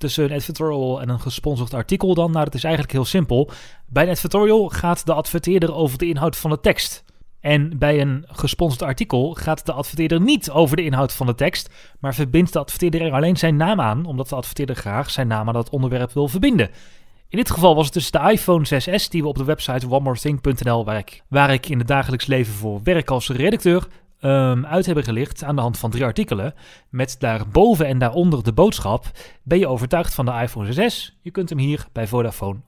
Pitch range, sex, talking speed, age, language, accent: 125-170 Hz, male, 215 wpm, 30-49, Dutch, Dutch